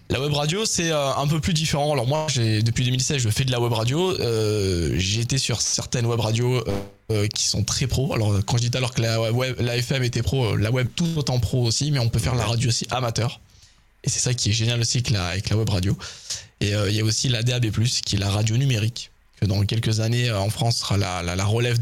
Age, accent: 20-39, French